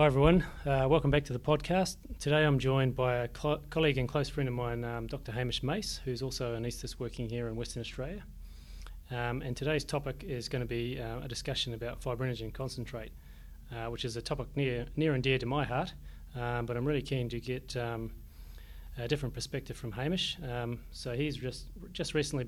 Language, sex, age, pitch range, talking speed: English, male, 30-49, 115-135 Hz, 210 wpm